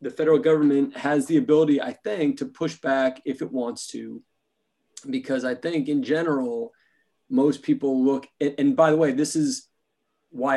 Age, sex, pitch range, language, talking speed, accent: 30-49, male, 140-230 Hz, English, 170 wpm, American